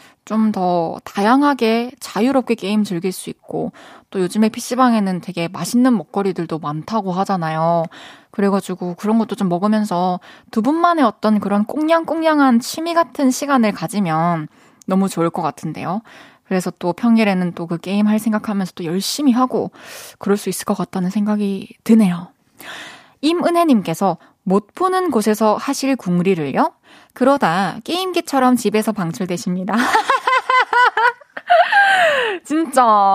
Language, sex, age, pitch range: Korean, female, 20-39, 190-275 Hz